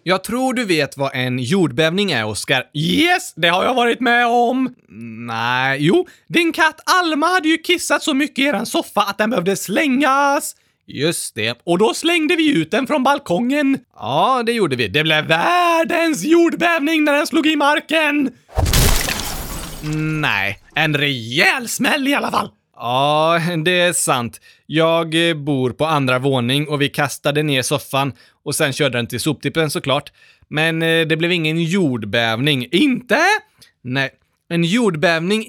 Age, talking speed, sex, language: 20-39, 155 wpm, male, Swedish